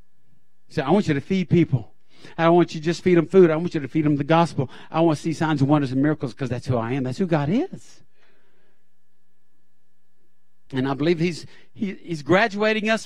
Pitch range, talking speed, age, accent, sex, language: 160-220 Hz, 230 wpm, 50-69, American, male, English